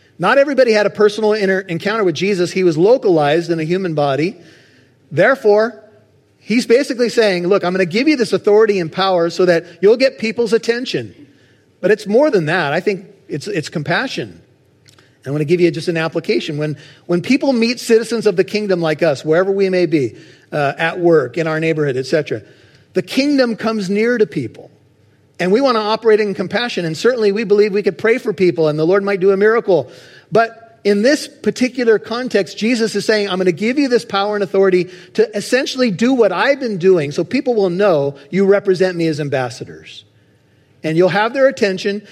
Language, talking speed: English, 200 wpm